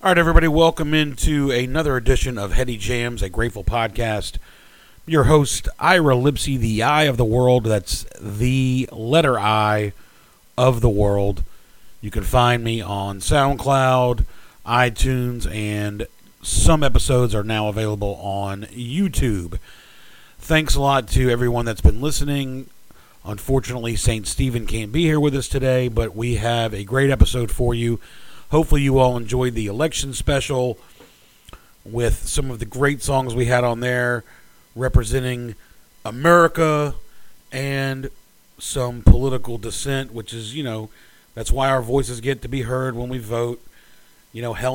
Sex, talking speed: male, 150 wpm